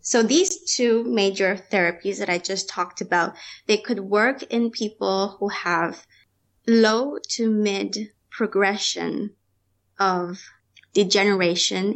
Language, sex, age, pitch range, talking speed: English, female, 20-39, 185-230 Hz, 115 wpm